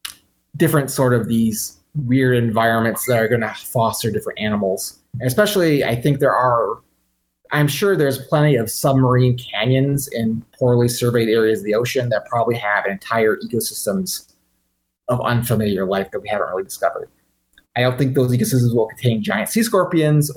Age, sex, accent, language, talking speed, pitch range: 30-49, male, American, English, 160 wpm, 110-145 Hz